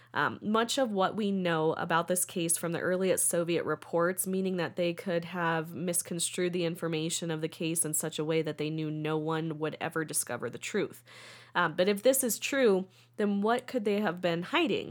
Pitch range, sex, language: 165-200 Hz, female, English